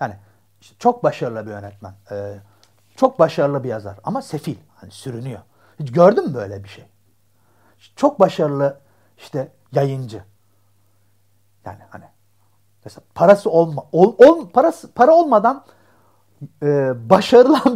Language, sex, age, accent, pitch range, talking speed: Turkish, male, 60-79, native, 105-170 Hz, 115 wpm